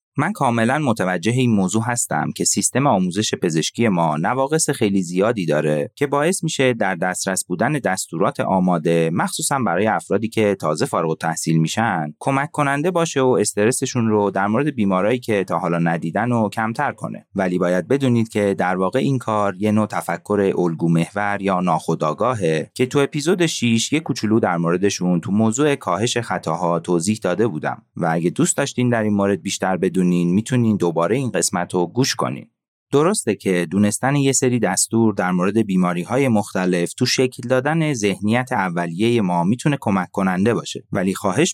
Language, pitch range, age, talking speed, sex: Persian, 90-125 Hz, 30-49, 165 wpm, male